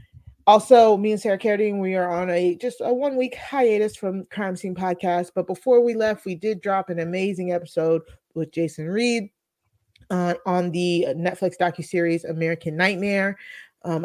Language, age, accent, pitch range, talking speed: English, 20-39, American, 165-205 Hz, 160 wpm